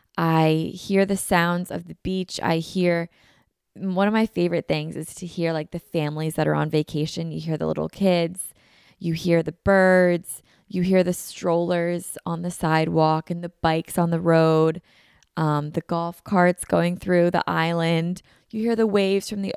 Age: 20-39